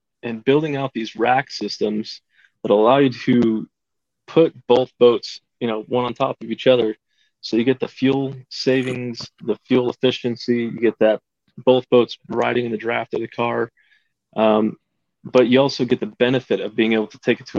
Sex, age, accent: male, 20-39, American